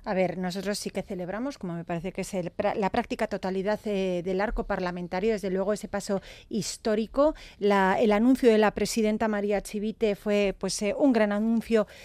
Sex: female